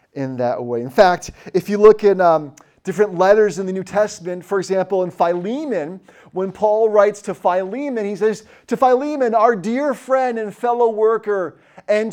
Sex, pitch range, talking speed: male, 180-230 Hz, 180 wpm